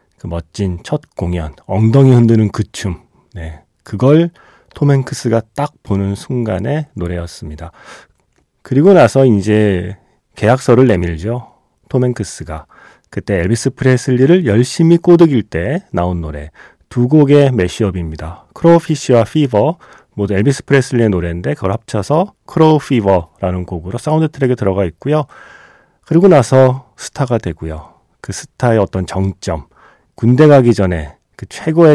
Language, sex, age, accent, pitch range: Korean, male, 30-49, native, 95-135 Hz